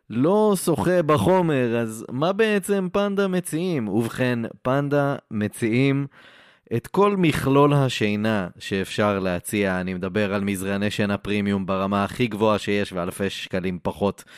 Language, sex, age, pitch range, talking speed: Hebrew, male, 20-39, 90-120 Hz, 125 wpm